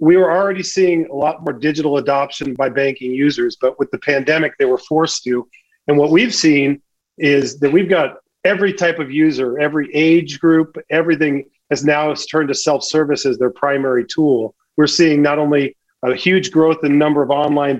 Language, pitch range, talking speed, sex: English, 130-155 Hz, 190 wpm, male